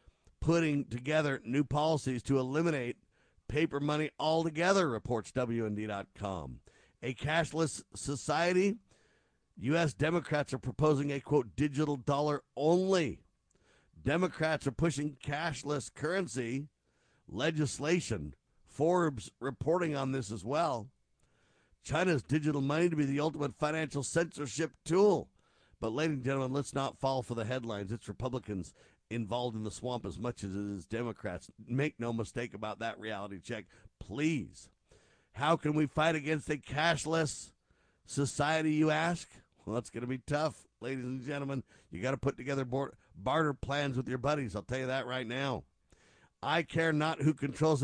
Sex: male